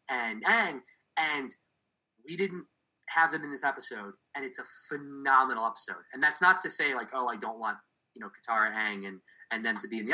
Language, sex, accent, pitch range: English, male, American, 115-165 Hz